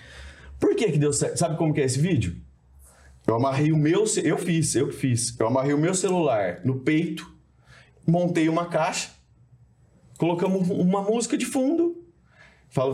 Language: Portuguese